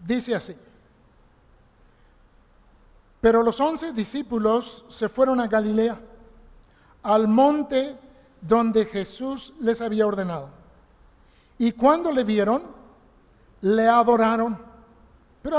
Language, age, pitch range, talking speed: Spanish, 50-69, 205-250 Hz, 90 wpm